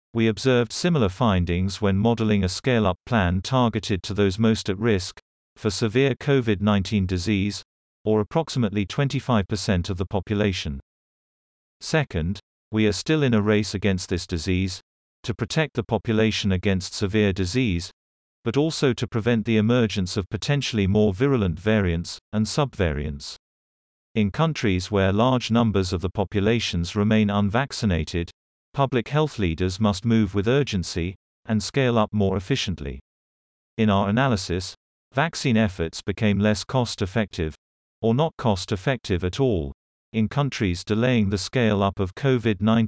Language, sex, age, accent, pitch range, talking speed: English, male, 40-59, British, 90-115 Hz, 135 wpm